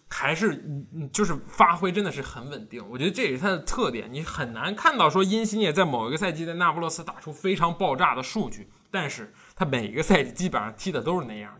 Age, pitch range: 20-39, 130-185 Hz